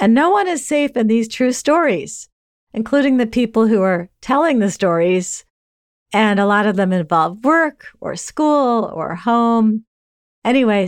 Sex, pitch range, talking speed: female, 165-220 Hz, 160 wpm